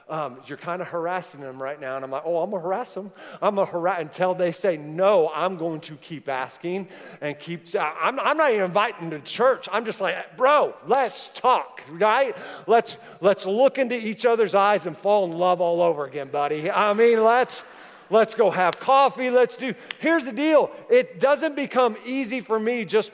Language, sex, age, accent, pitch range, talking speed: English, male, 40-59, American, 170-225 Hz, 205 wpm